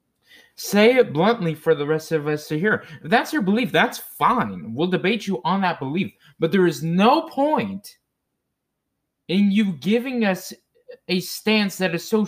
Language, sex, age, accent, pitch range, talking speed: English, male, 20-39, American, 155-215 Hz, 170 wpm